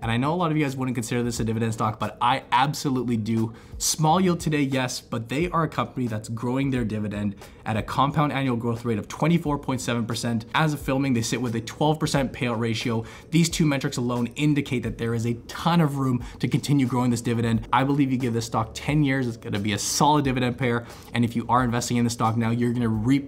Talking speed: 245 wpm